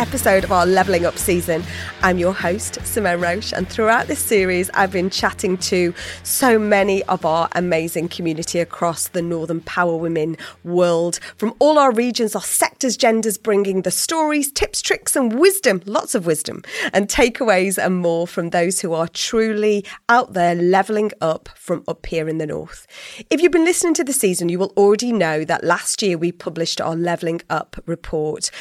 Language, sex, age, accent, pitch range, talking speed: English, female, 30-49, British, 170-220 Hz, 180 wpm